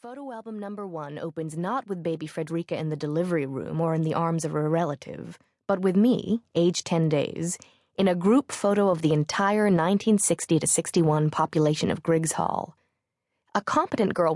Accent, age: American, 20-39